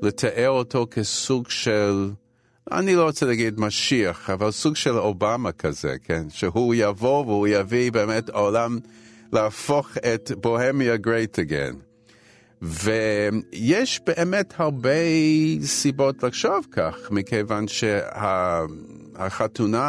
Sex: male